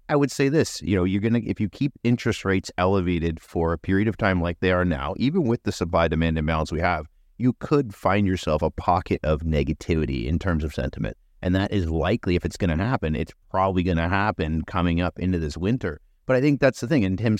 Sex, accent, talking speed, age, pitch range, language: male, American, 240 wpm, 30-49, 85-105 Hz, English